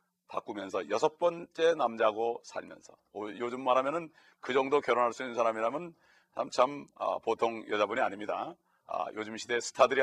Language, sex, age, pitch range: Korean, male, 40-59, 120-165 Hz